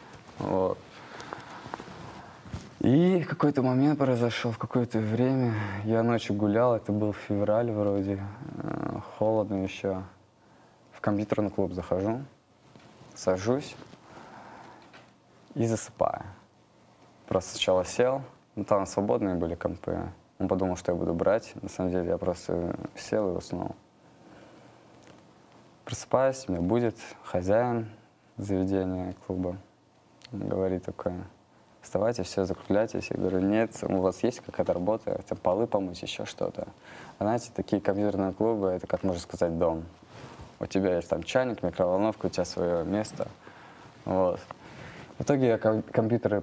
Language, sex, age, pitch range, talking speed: Russian, male, 20-39, 95-120 Hz, 125 wpm